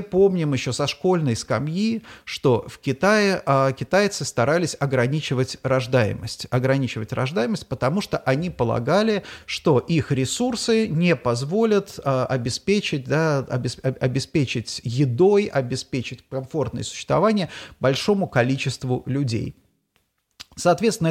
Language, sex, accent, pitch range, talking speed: Russian, male, native, 130-180 Hz, 95 wpm